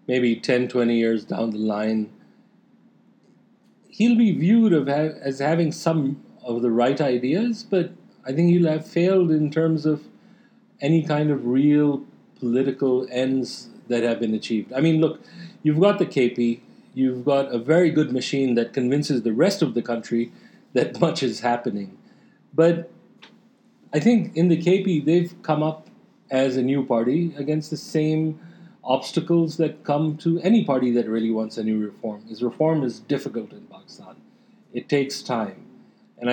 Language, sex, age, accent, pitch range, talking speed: English, male, 40-59, Indian, 125-170 Hz, 160 wpm